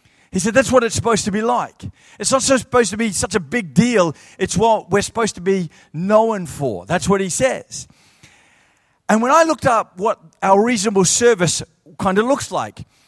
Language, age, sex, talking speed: English, 40-59, male, 195 wpm